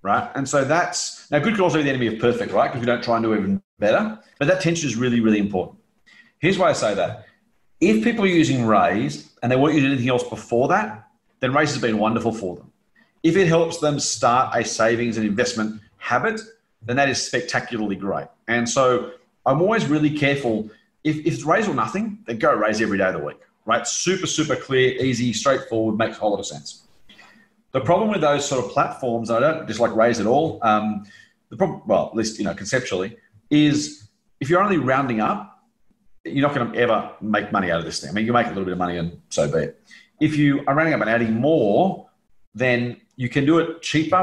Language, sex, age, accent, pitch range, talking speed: English, male, 30-49, Australian, 115-160 Hz, 230 wpm